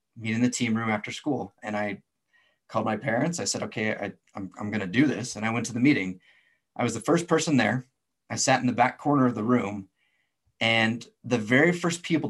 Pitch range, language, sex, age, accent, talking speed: 105-130 Hz, English, male, 30-49, American, 235 wpm